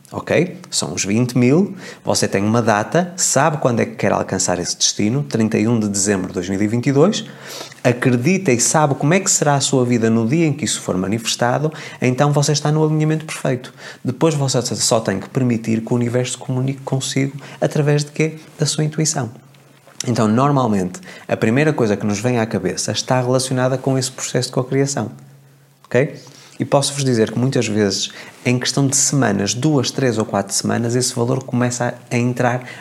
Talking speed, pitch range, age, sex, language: 185 wpm, 110-140 Hz, 20-39, male, Portuguese